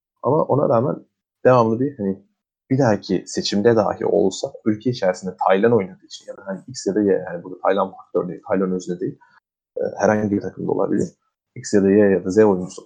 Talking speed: 200 wpm